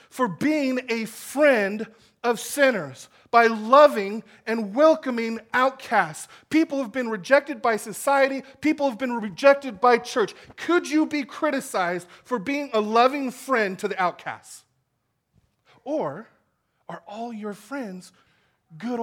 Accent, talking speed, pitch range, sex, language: American, 130 wpm, 180-270 Hz, male, English